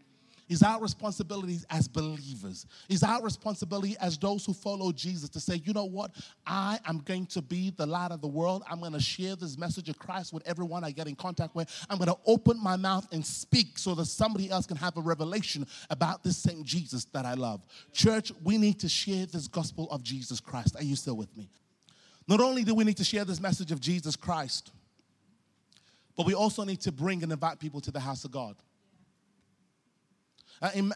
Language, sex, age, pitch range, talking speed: English, male, 30-49, 155-190 Hz, 210 wpm